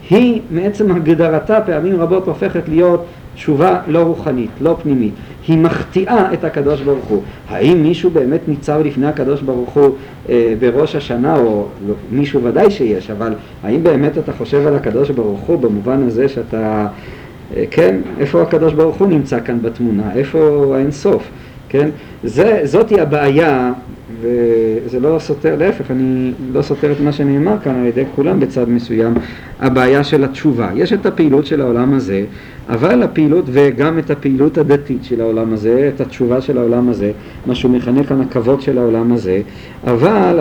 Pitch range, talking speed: 125-165 Hz, 160 wpm